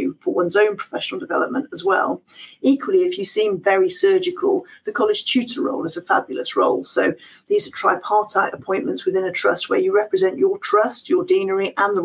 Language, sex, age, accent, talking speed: English, female, 40-59, British, 190 wpm